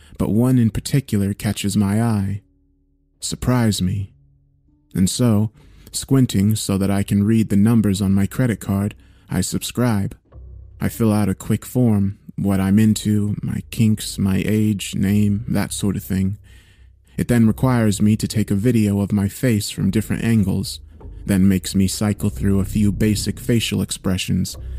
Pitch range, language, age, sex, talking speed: 95-110 Hz, English, 30-49, male, 160 wpm